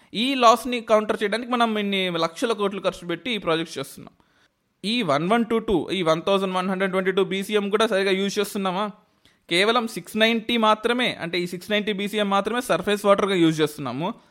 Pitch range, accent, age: 170-220 Hz, native, 20-39